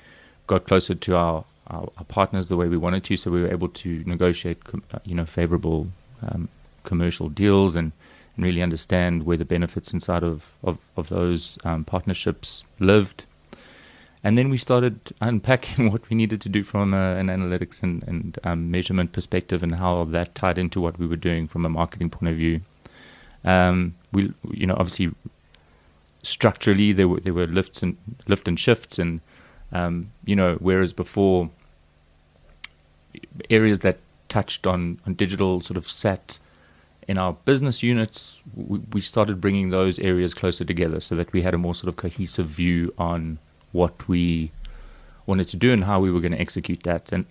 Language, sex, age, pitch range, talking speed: English, male, 30-49, 85-95 Hz, 175 wpm